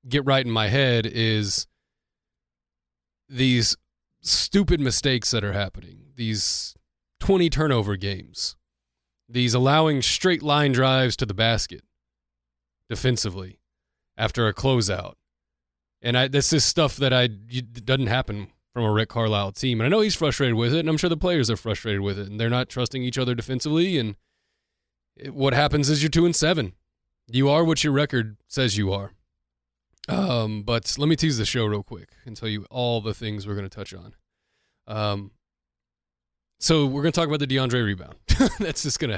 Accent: American